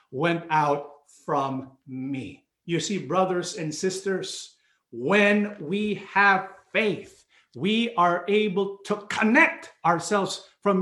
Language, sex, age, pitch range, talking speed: English, male, 50-69, 160-210 Hz, 110 wpm